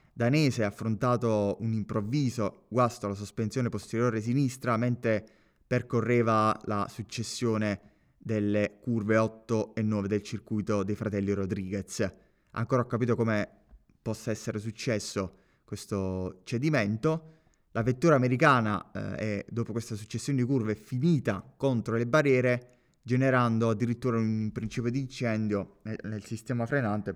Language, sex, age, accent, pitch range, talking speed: Italian, male, 20-39, native, 100-125 Hz, 125 wpm